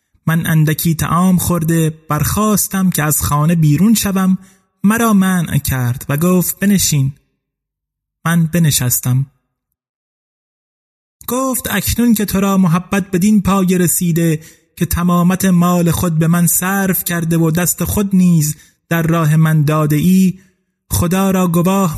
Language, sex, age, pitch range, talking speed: Persian, male, 30-49, 150-185 Hz, 125 wpm